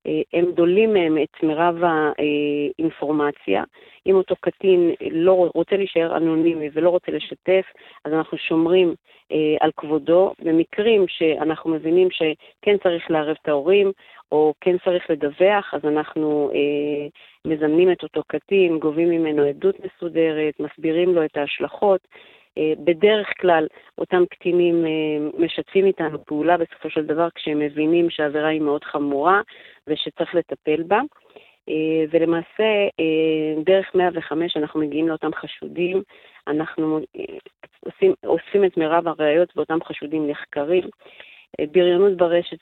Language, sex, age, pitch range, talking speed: Hebrew, female, 40-59, 155-180 Hz, 125 wpm